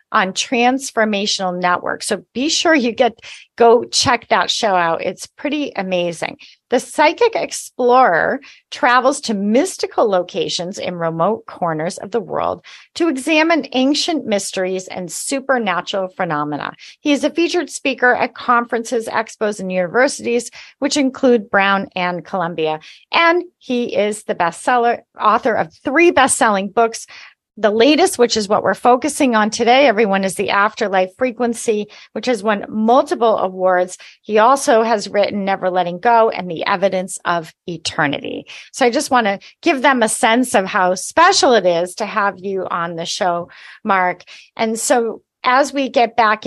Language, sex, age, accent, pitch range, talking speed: English, female, 40-59, American, 185-255 Hz, 155 wpm